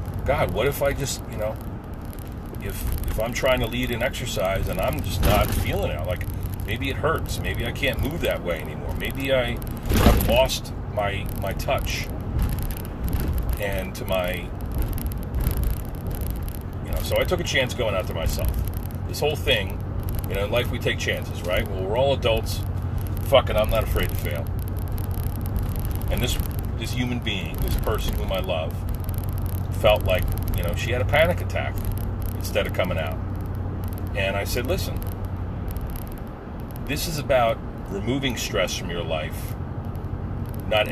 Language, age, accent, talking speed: English, 40-59, American, 165 wpm